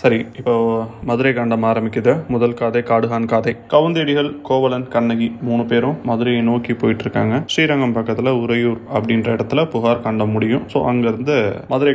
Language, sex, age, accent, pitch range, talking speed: Tamil, male, 20-39, native, 115-135 Hz, 145 wpm